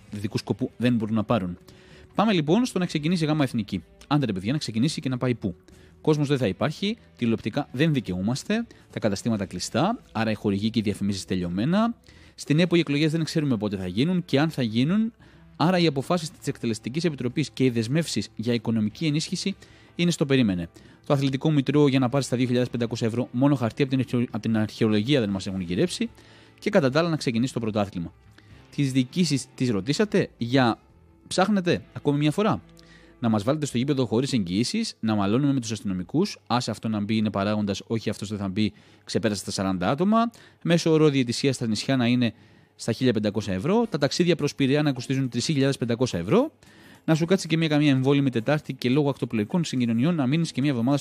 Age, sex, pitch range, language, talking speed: 30-49, male, 110-155 Hz, Greek, 190 wpm